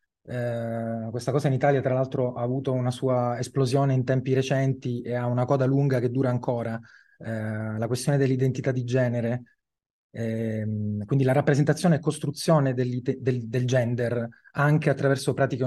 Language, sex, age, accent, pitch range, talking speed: Italian, male, 20-39, native, 125-150 Hz, 155 wpm